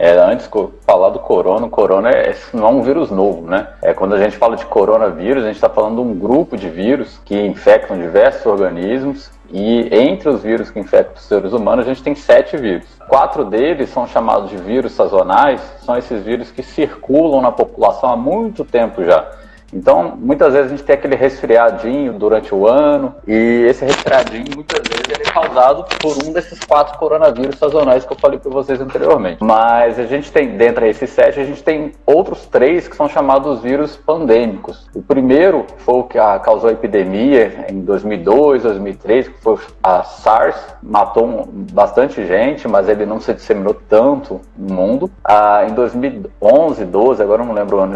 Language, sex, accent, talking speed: Portuguese, male, Brazilian, 190 wpm